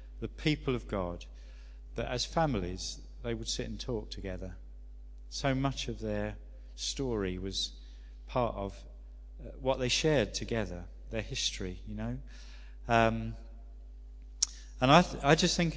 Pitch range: 90-135 Hz